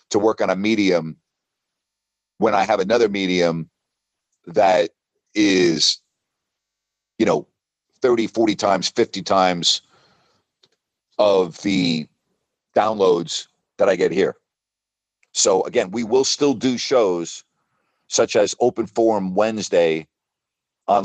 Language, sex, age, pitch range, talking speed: English, male, 50-69, 95-115 Hz, 110 wpm